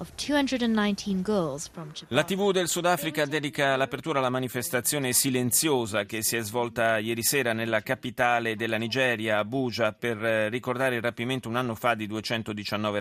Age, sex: 30-49, male